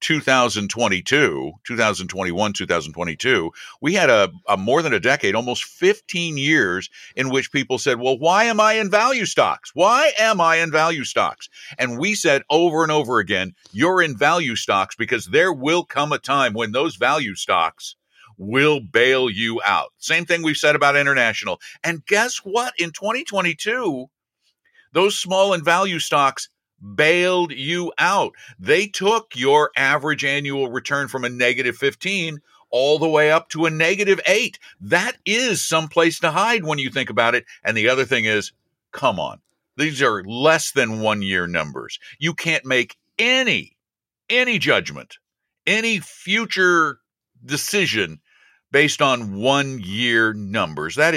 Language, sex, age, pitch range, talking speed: English, male, 50-69, 130-180 Hz, 155 wpm